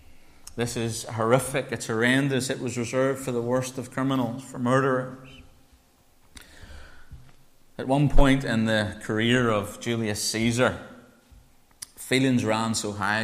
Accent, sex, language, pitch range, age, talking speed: British, male, English, 100-120 Hz, 30-49, 125 wpm